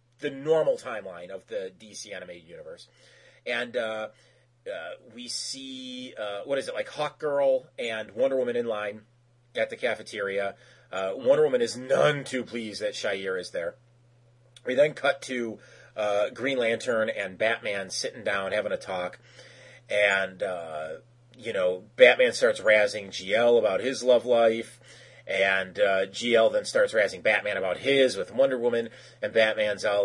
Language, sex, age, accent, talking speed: English, male, 30-49, American, 160 wpm